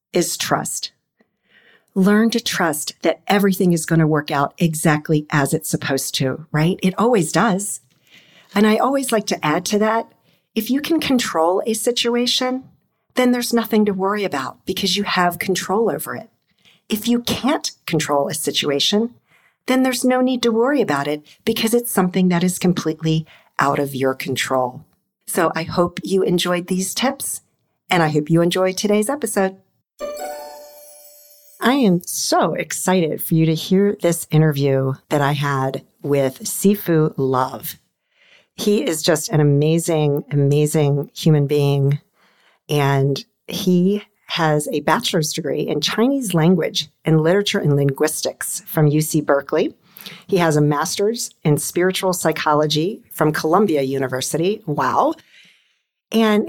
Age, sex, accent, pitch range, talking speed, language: 50-69, female, American, 150-210 Hz, 145 wpm, English